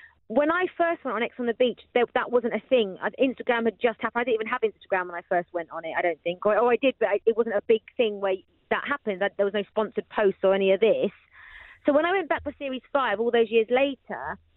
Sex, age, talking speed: female, 30-49, 270 wpm